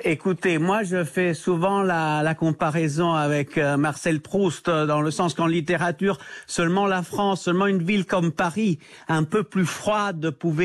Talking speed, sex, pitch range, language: 170 wpm, male, 155-195 Hz, French